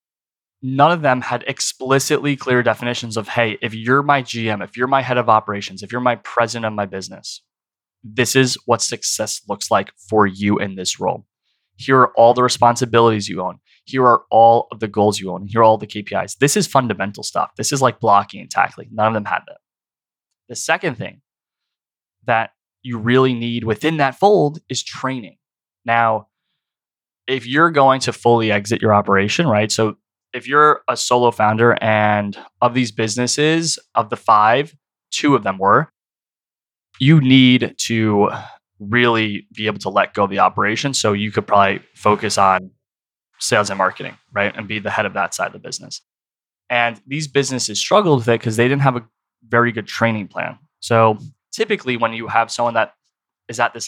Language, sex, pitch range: English, male, 105-130 Hz